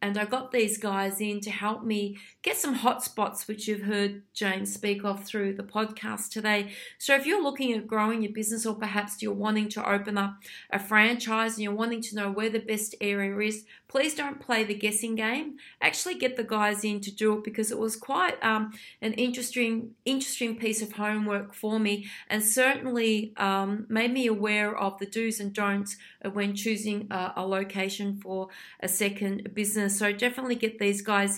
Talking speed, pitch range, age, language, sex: 195 wpm, 200-230 Hz, 30-49, English, female